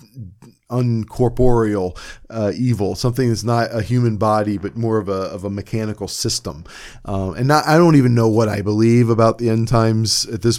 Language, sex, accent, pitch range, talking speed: English, male, American, 105-125 Hz, 185 wpm